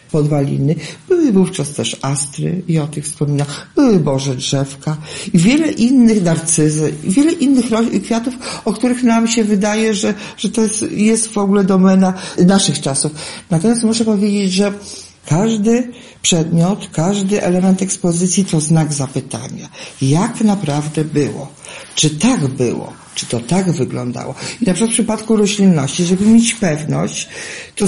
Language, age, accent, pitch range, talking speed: Polish, 50-69, native, 145-210 Hz, 150 wpm